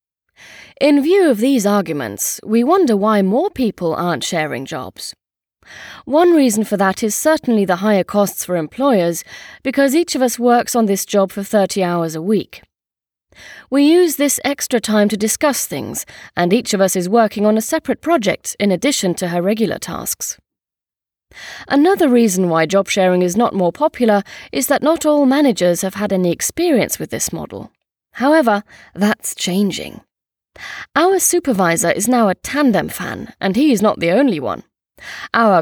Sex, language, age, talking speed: female, English, 30-49, 170 wpm